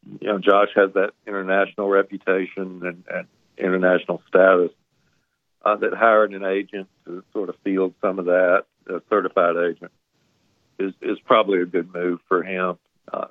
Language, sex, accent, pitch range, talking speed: English, male, American, 90-115 Hz, 160 wpm